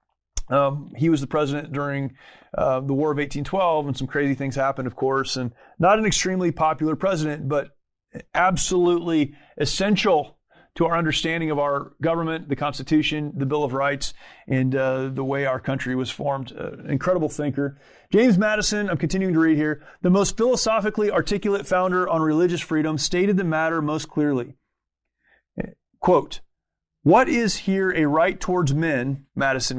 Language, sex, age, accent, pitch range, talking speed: English, male, 30-49, American, 140-180 Hz, 160 wpm